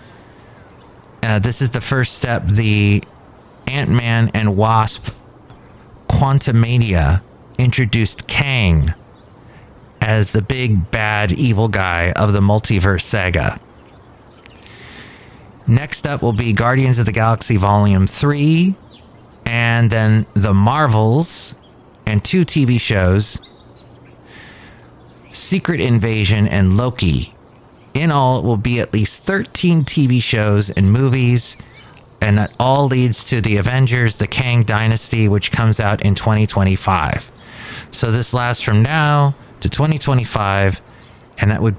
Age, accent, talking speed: 30-49, American, 120 wpm